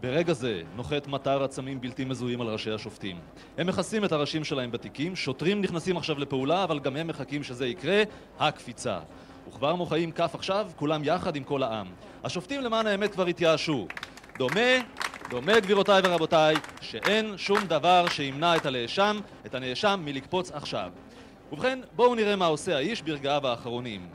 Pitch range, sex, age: 140-205 Hz, male, 30-49